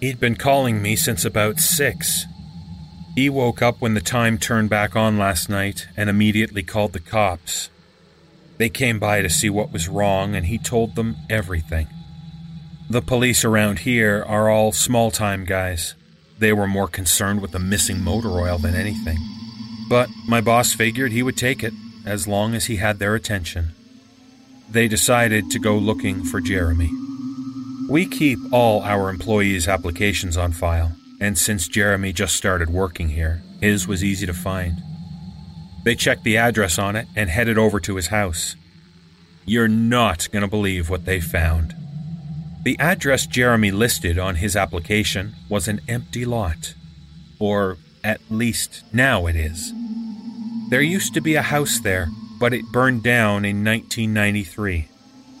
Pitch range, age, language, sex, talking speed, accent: 95-120 Hz, 30-49, English, male, 160 wpm, American